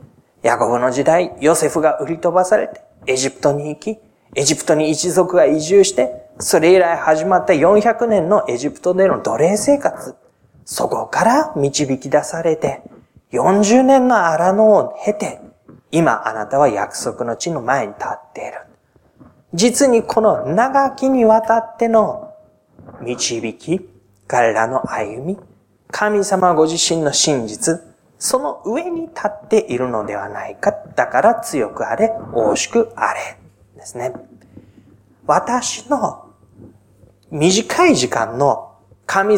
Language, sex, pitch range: Japanese, male, 130-210 Hz